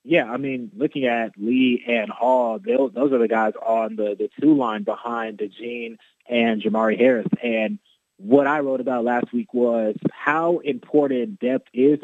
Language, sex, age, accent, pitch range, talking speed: English, male, 20-39, American, 110-125 Hz, 170 wpm